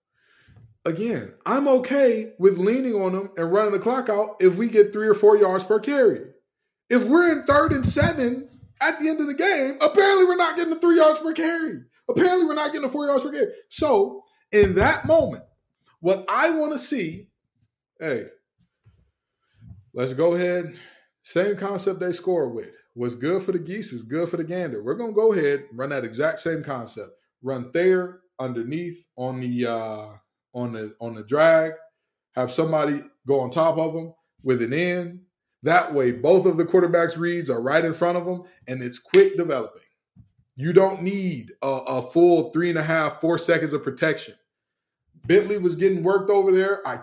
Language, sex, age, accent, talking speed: English, male, 20-39, American, 190 wpm